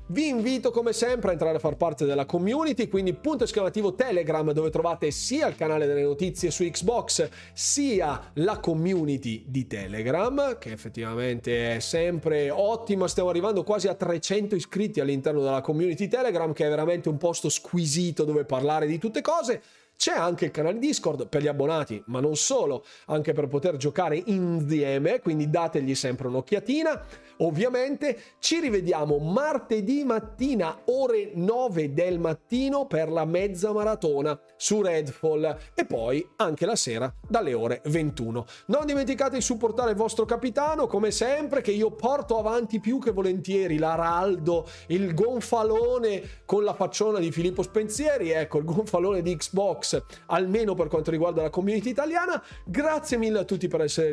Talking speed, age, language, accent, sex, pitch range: 155 wpm, 30-49, Italian, native, male, 155-230 Hz